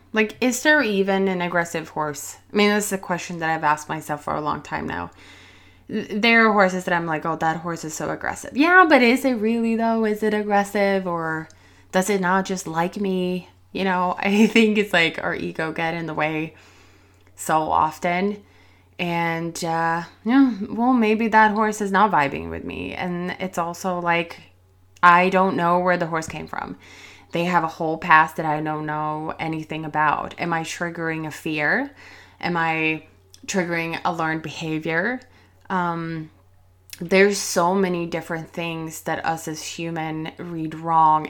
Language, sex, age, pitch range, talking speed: English, female, 20-39, 160-195 Hz, 175 wpm